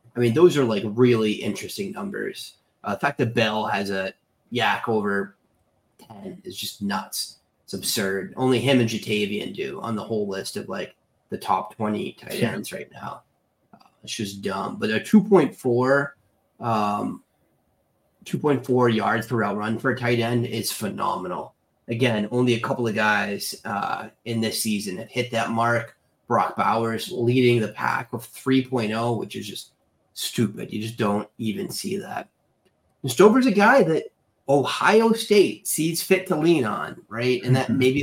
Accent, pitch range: American, 110-130 Hz